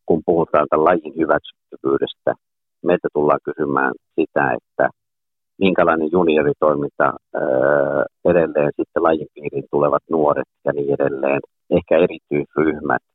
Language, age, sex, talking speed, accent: Finnish, 50-69, male, 100 wpm, native